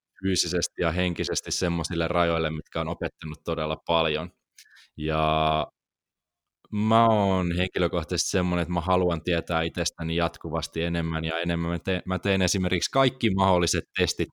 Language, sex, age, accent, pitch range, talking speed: Finnish, male, 20-39, native, 80-90 Hz, 125 wpm